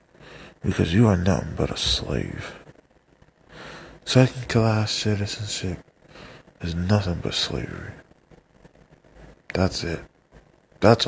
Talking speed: 90 wpm